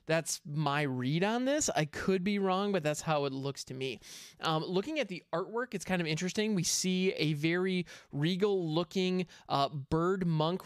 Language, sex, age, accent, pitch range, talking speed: English, male, 20-39, American, 155-205 Hz, 185 wpm